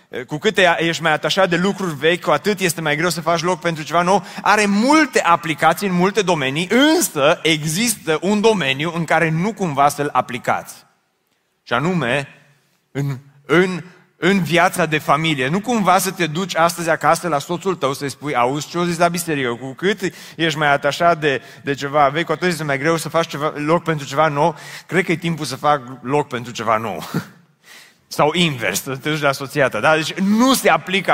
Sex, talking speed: male, 195 wpm